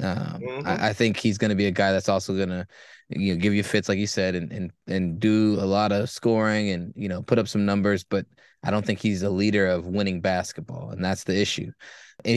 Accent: American